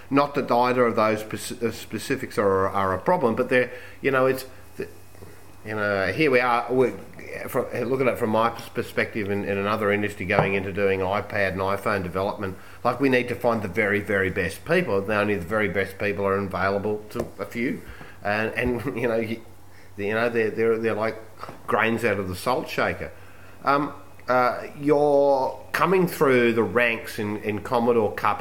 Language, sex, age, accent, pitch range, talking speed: English, male, 30-49, Australian, 95-120 Hz, 185 wpm